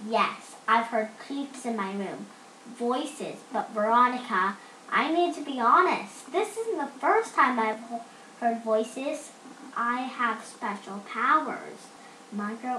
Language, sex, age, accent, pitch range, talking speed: English, female, 10-29, American, 225-315 Hz, 135 wpm